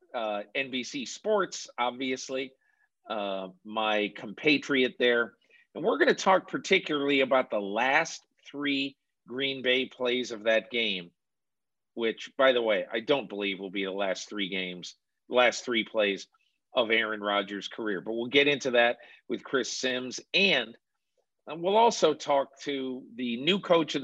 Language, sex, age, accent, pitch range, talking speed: English, male, 50-69, American, 105-130 Hz, 155 wpm